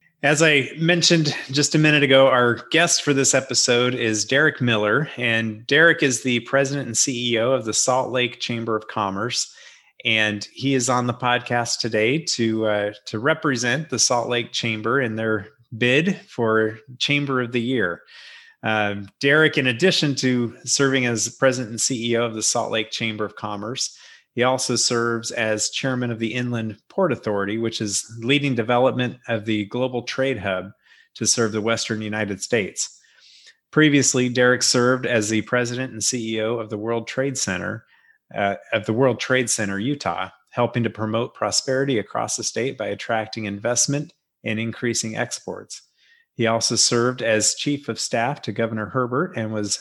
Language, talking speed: English, 165 wpm